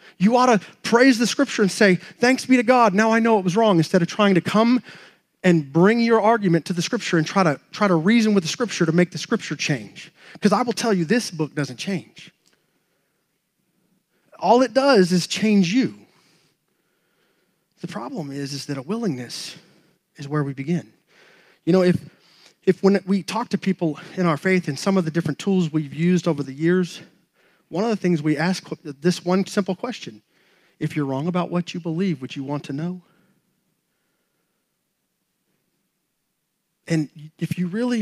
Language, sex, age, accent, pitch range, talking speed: English, male, 30-49, American, 160-195 Hz, 190 wpm